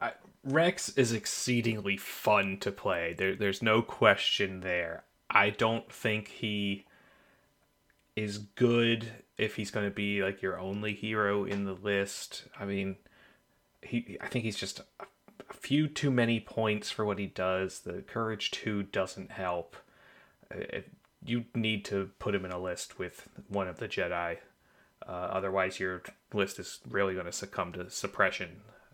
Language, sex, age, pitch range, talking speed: English, male, 30-49, 95-115 Hz, 160 wpm